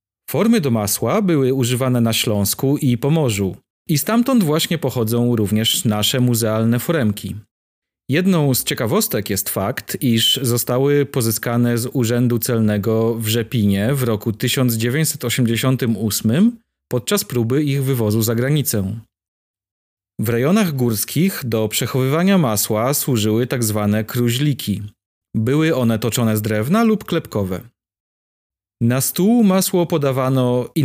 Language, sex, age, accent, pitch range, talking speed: Polish, male, 40-59, native, 110-145 Hz, 115 wpm